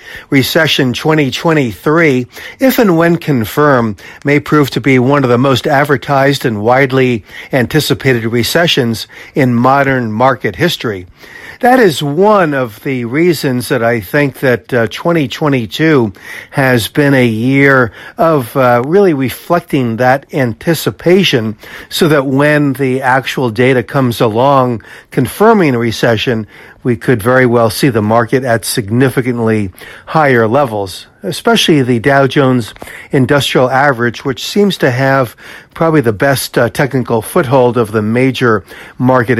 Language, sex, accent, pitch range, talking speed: English, male, American, 120-145 Hz, 130 wpm